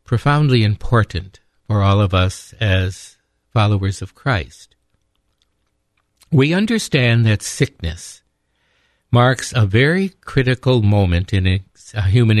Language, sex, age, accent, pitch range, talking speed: English, male, 60-79, American, 95-130 Hz, 100 wpm